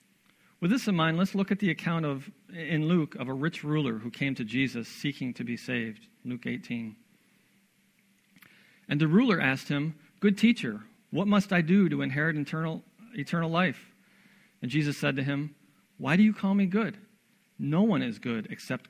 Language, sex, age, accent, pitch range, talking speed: English, male, 40-59, American, 135-200 Hz, 185 wpm